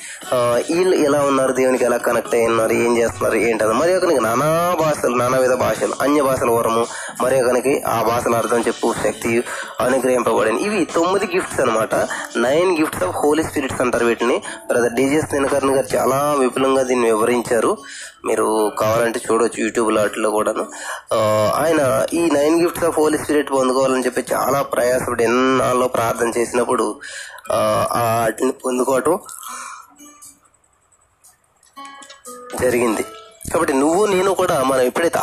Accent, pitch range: native, 120-165 Hz